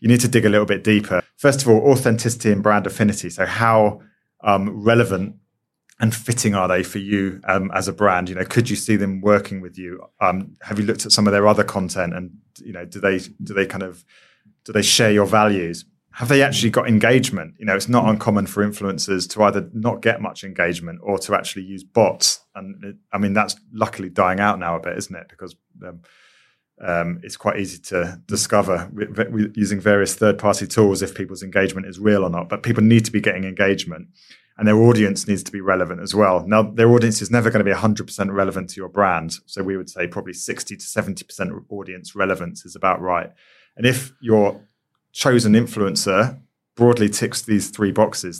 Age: 30-49